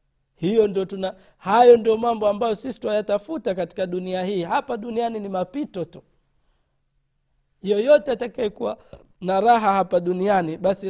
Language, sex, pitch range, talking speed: Swahili, male, 160-215 Hz, 130 wpm